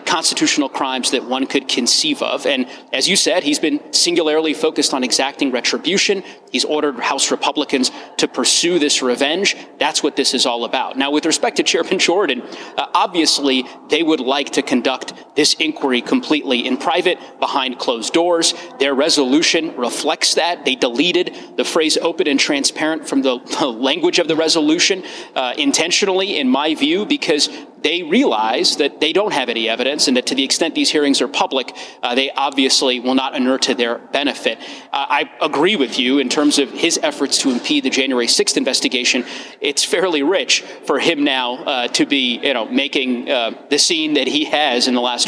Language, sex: English, male